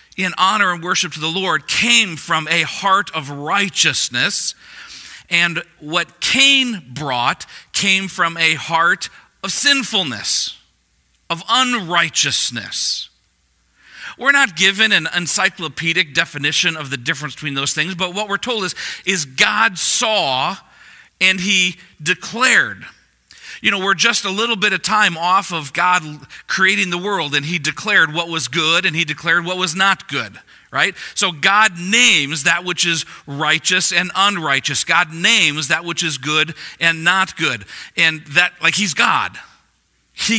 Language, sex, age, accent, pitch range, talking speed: English, male, 40-59, American, 150-195 Hz, 150 wpm